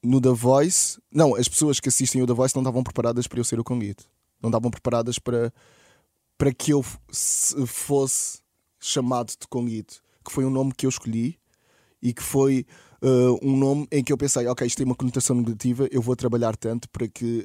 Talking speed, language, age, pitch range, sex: 200 wpm, Portuguese, 20-39, 115-135 Hz, male